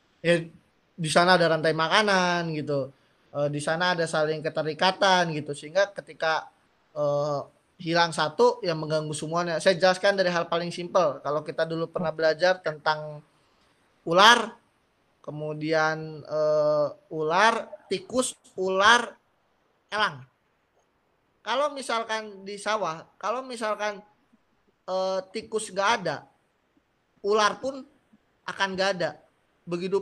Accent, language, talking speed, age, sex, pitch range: native, Indonesian, 115 wpm, 20-39, male, 155-220 Hz